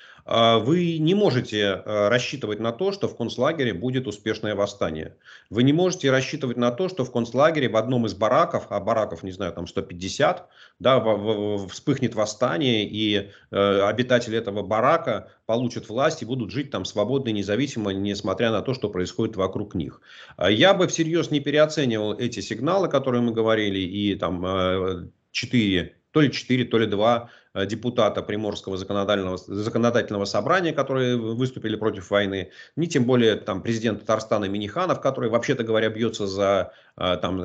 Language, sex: Russian, male